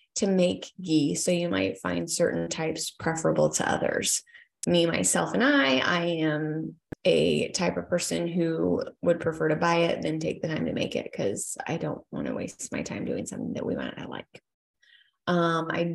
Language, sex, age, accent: English, female, 20-39, American